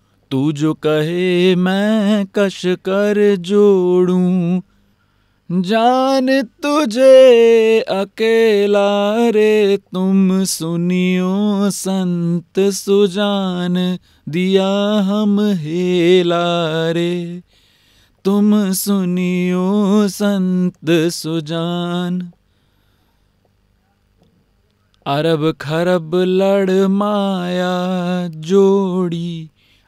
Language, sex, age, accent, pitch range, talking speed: English, male, 30-49, Indian, 165-200 Hz, 55 wpm